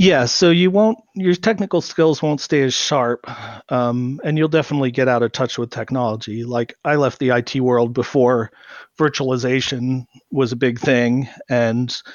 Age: 40-59